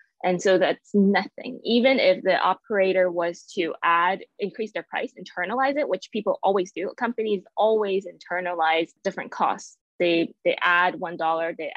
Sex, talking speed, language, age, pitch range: female, 155 wpm, English, 20-39, 175-225 Hz